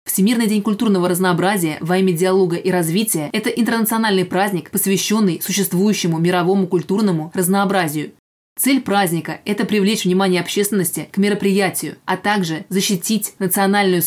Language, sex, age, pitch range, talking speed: Russian, female, 20-39, 180-200 Hz, 125 wpm